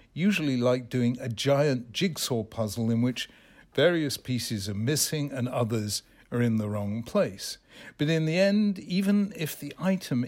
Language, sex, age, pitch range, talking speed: English, male, 60-79, 115-150 Hz, 165 wpm